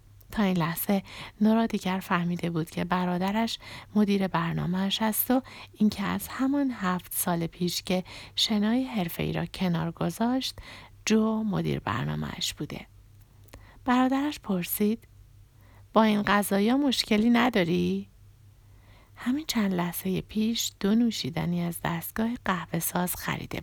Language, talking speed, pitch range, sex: Persian, 120 wpm, 135-220 Hz, female